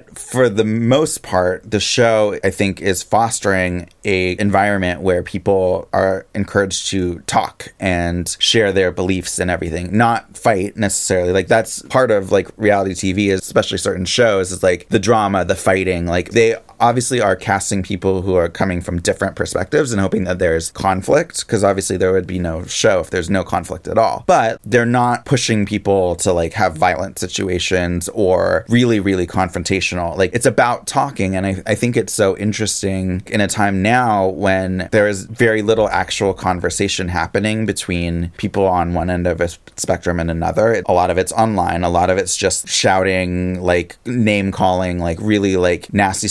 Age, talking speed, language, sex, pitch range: 30-49, 180 wpm, English, male, 90-110 Hz